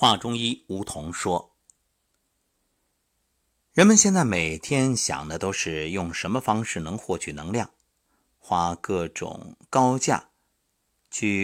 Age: 50-69